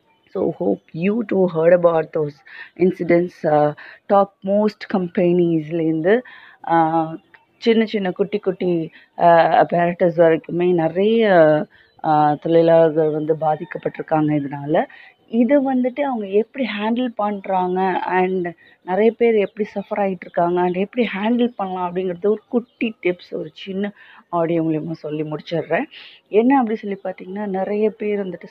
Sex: female